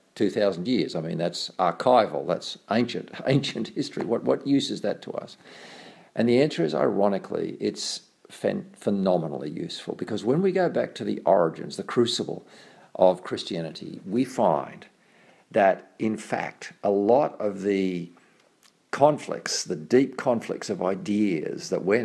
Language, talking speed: English, 150 wpm